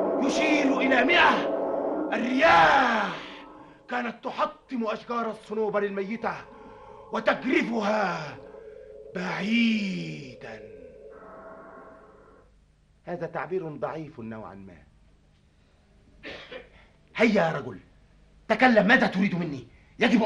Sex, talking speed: male, 70 wpm